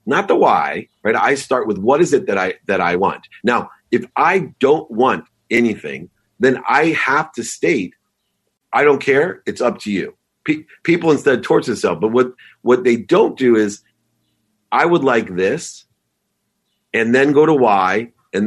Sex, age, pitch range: male, 40-59, 125-180 Hz